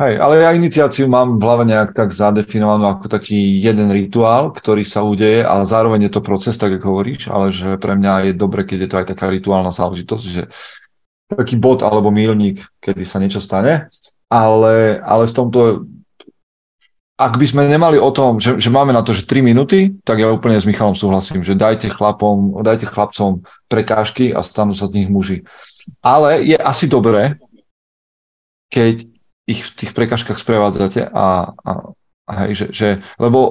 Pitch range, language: 95-115 Hz, Slovak